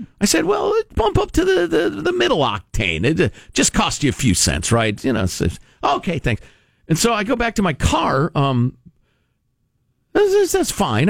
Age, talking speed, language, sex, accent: 50-69, 200 wpm, English, male, American